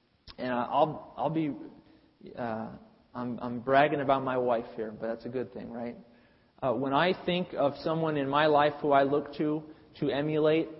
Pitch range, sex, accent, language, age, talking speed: 130-170 Hz, male, American, English, 40-59, 185 wpm